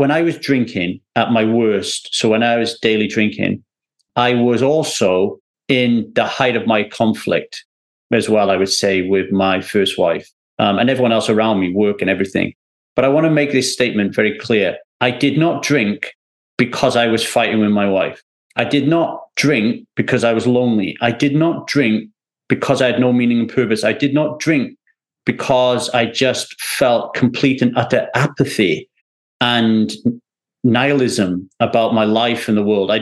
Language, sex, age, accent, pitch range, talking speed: English, male, 40-59, British, 110-150 Hz, 180 wpm